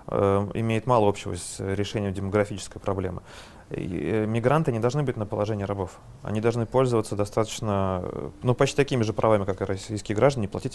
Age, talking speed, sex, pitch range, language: 30-49, 155 wpm, male, 100-115 Hz, Russian